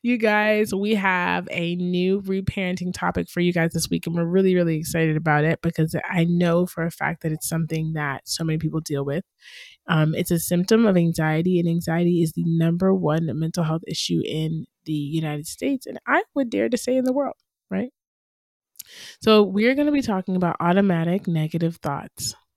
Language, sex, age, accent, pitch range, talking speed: English, male, 20-39, American, 165-200 Hz, 195 wpm